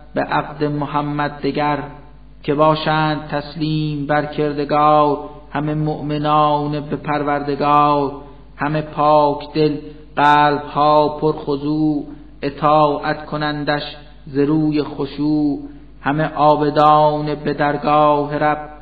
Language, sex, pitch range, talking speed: Persian, male, 145-150 Hz, 90 wpm